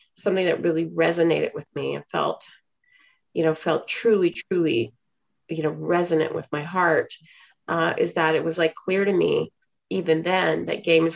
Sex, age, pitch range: female, 30-49, 160-200 Hz